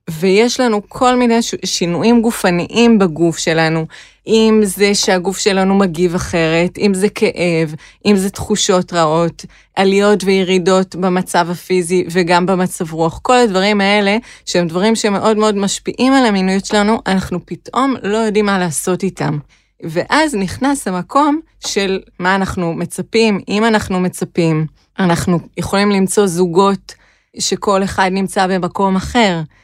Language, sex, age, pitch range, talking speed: Hebrew, female, 20-39, 175-210 Hz, 130 wpm